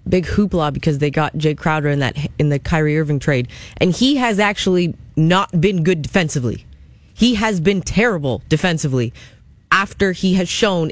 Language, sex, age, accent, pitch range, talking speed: English, female, 20-39, American, 155-195 Hz, 170 wpm